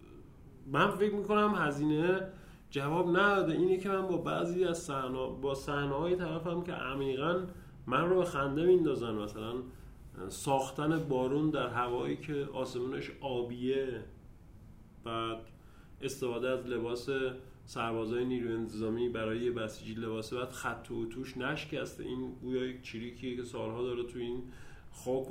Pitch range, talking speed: 125-165 Hz, 130 wpm